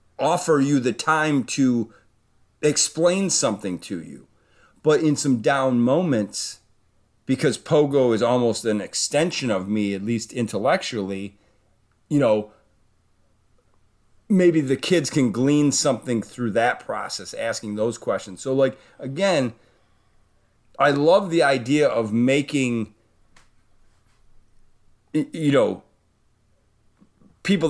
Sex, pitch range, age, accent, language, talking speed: male, 105-135 Hz, 40-59, American, English, 110 wpm